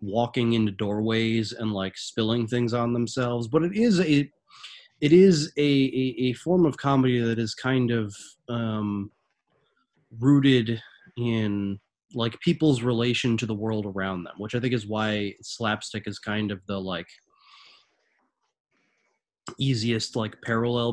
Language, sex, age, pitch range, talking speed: English, male, 20-39, 105-130 Hz, 145 wpm